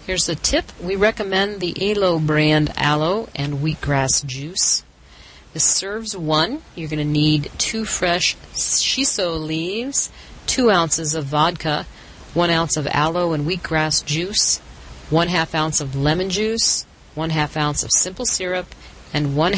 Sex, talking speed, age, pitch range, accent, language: female, 145 wpm, 40-59, 140-180 Hz, American, English